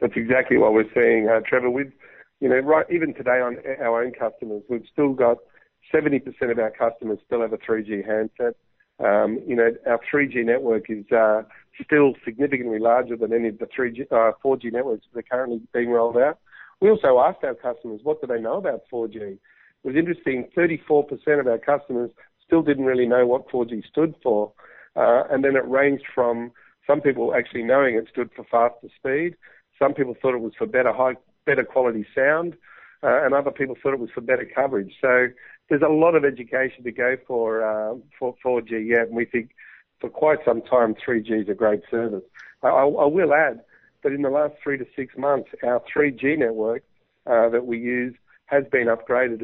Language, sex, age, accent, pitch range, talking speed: English, male, 50-69, Australian, 115-140 Hz, 200 wpm